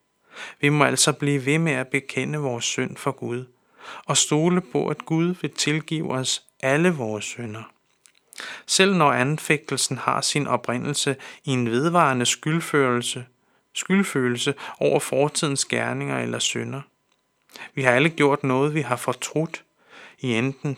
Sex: male